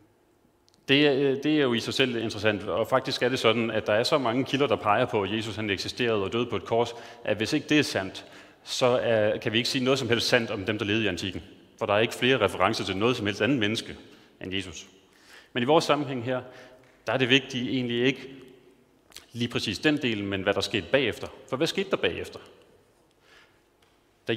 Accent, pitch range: native, 110-140 Hz